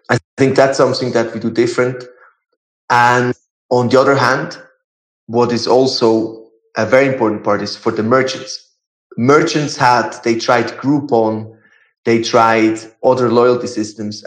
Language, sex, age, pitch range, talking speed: English, male, 30-49, 115-140 Hz, 145 wpm